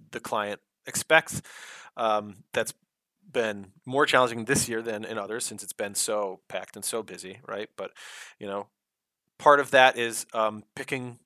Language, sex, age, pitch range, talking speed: English, male, 30-49, 105-125 Hz, 165 wpm